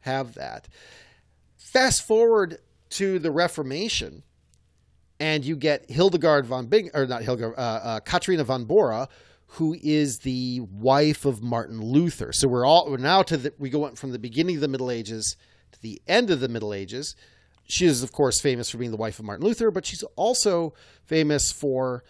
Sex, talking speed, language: male, 185 wpm, English